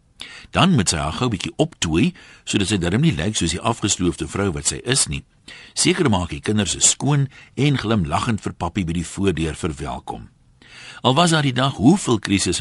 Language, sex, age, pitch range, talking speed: Dutch, male, 60-79, 85-125 Hz, 195 wpm